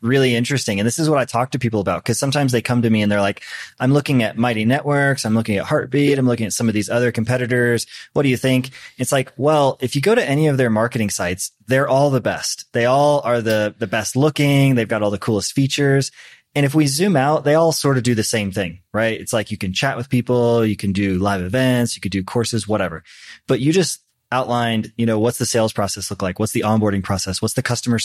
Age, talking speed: 20-39, 255 wpm